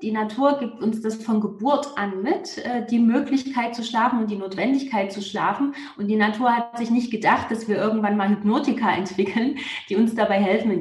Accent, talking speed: German, 200 wpm